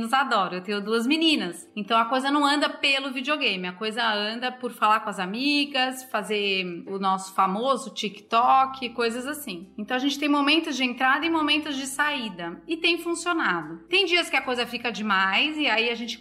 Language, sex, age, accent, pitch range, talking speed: Portuguese, female, 30-49, Brazilian, 220-285 Hz, 195 wpm